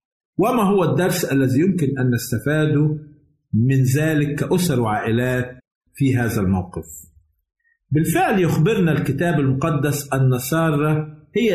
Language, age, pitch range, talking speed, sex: Arabic, 50-69, 130-170 Hz, 110 wpm, male